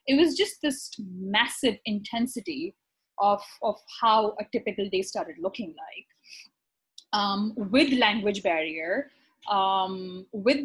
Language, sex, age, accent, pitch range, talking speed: English, female, 20-39, Indian, 195-250 Hz, 120 wpm